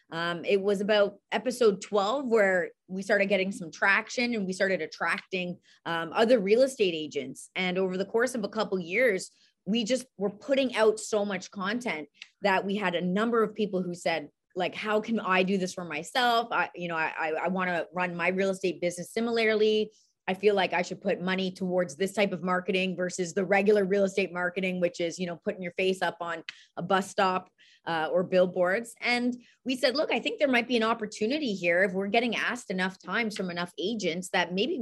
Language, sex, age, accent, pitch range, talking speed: English, female, 20-39, American, 185-225 Hz, 215 wpm